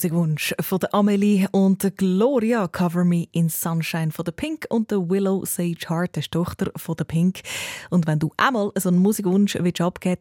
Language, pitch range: German, 165-220 Hz